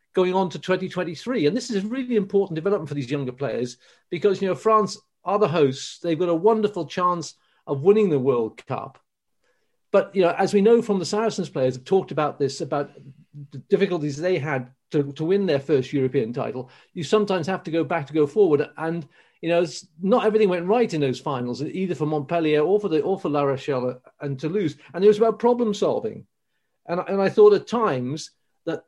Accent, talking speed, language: British, 215 wpm, English